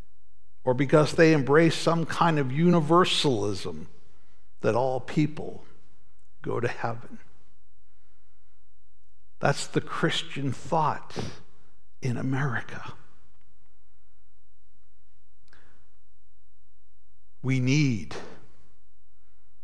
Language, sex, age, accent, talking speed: English, male, 60-79, American, 65 wpm